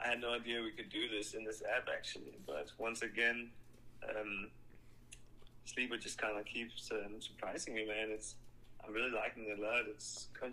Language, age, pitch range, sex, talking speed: English, 20-39, 105-120 Hz, male, 195 wpm